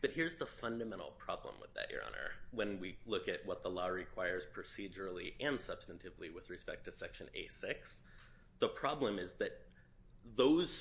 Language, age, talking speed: English, 30-49, 165 wpm